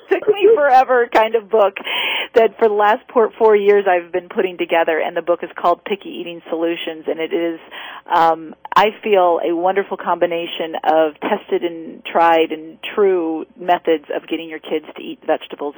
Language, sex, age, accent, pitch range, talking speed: English, female, 40-59, American, 175-240 Hz, 185 wpm